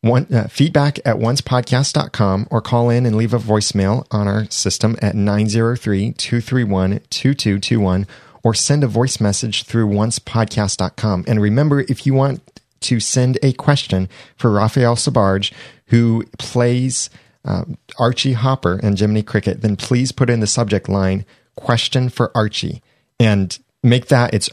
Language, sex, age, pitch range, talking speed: English, male, 30-49, 100-125 Hz, 140 wpm